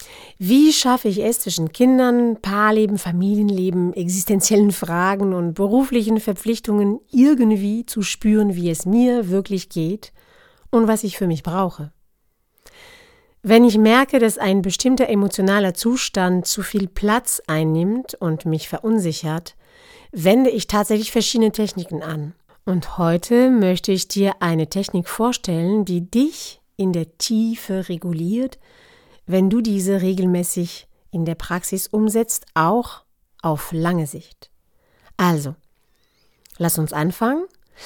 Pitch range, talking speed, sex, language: 175-230 Hz, 125 wpm, female, German